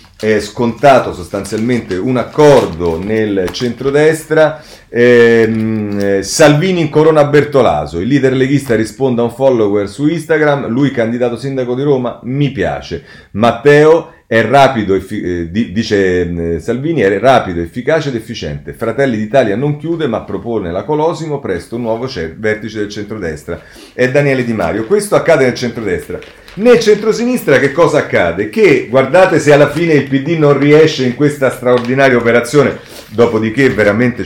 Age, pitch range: 40-59, 105-145 Hz